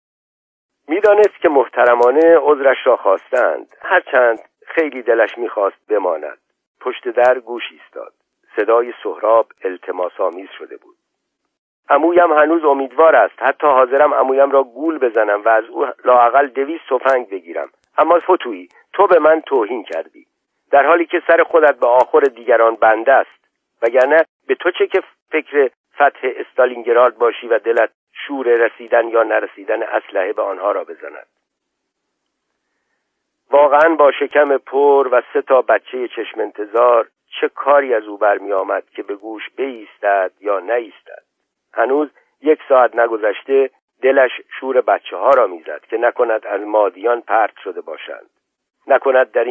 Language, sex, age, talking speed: Persian, male, 50-69, 140 wpm